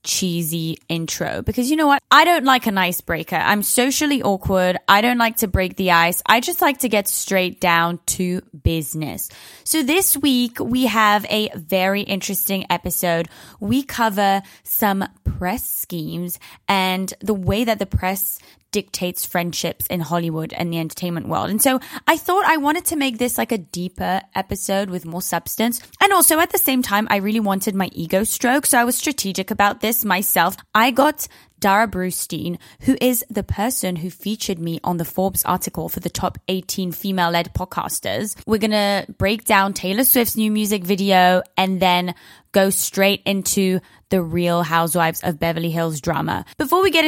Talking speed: 175 wpm